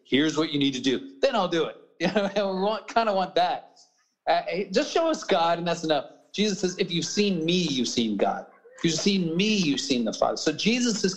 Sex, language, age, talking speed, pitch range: male, English, 40-59, 240 wpm, 150-205 Hz